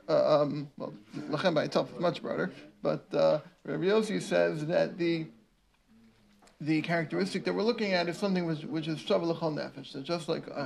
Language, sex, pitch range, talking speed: English, male, 150-180 Hz, 185 wpm